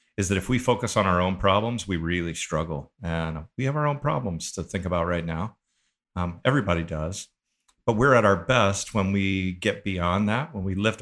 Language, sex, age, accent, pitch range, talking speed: English, male, 50-69, American, 80-100 Hz, 210 wpm